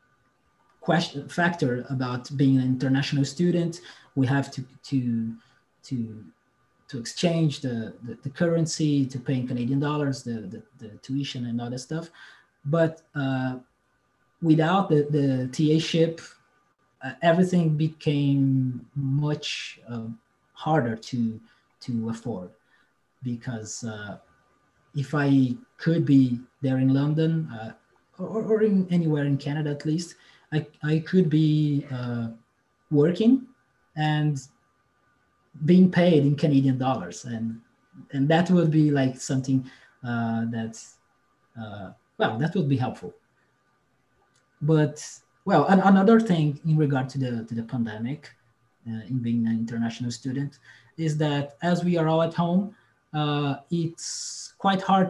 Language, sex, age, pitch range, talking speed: English, male, 30-49, 125-160 Hz, 130 wpm